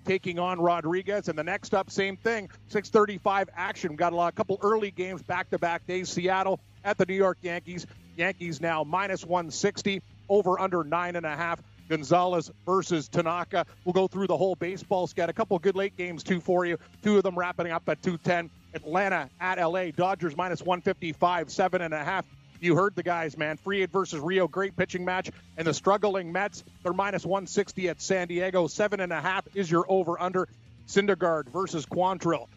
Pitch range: 170-190 Hz